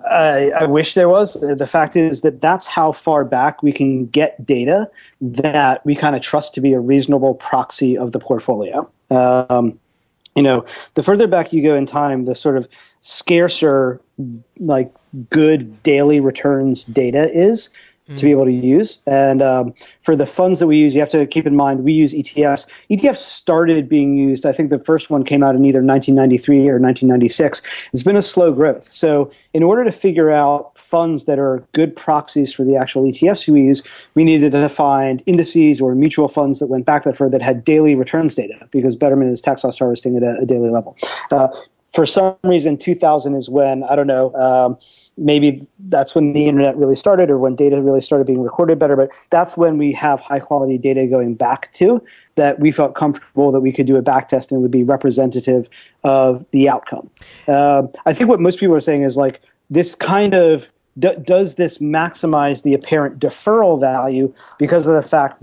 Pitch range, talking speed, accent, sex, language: 135-155 Hz, 205 wpm, American, male, English